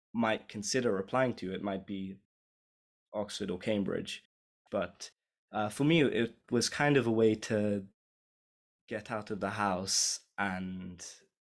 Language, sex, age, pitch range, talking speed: English, male, 20-39, 95-115 Hz, 140 wpm